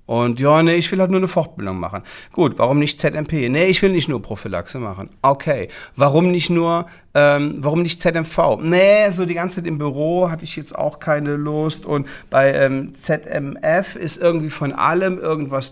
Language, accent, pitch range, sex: German, German, 105-165 Hz, male